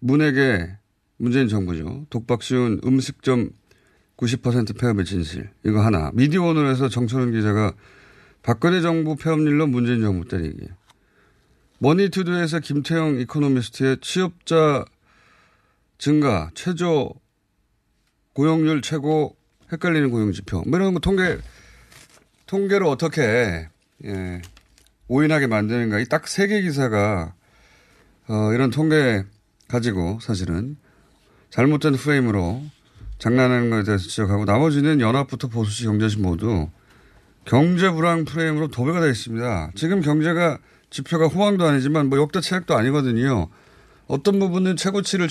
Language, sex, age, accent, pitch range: Korean, male, 30-49, native, 105-160 Hz